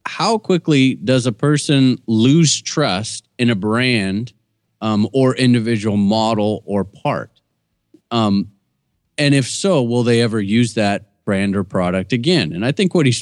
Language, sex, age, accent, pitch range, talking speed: English, male, 30-49, American, 100-135 Hz, 155 wpm